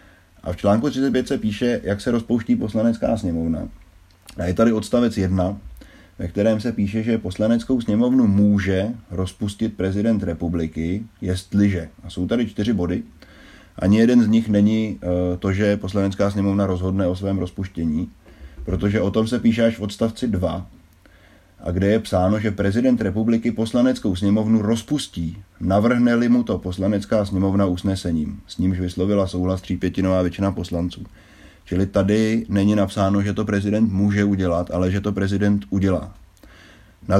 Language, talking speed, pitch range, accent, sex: Czech, 150 wpm, 95-110 Hz, native, male